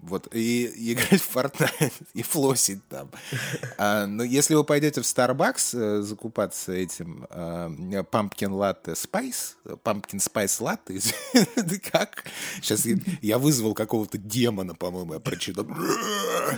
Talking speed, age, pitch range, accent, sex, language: 145 wpm, 20-39, 85-125 Hz, native, male, Russian